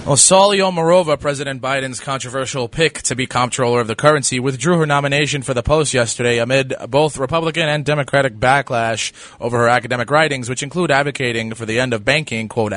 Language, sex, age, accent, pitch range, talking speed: English, male, 20-39, American, 120-155 Hz, 180 wpm